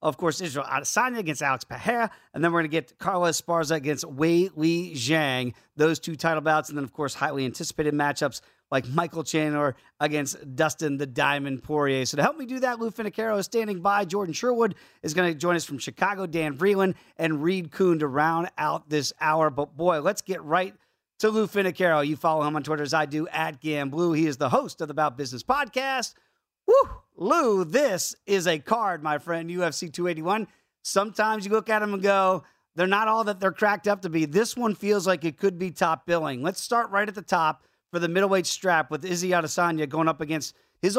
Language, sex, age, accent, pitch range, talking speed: English, male, 40-59, American, 155-200 Hz, 215 wpm